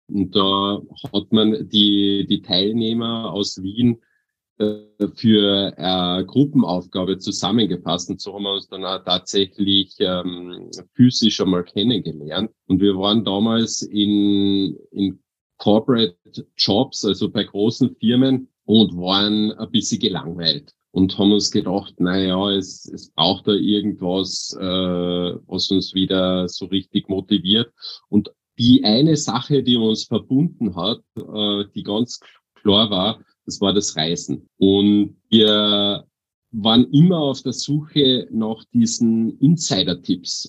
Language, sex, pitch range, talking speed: German, male, 95-115 Hz, 130 wpm